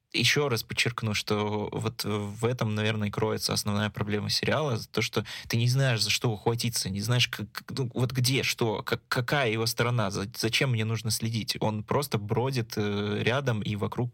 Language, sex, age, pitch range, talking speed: Russian, male, 20-39, 105-120 Hz, 165 wpm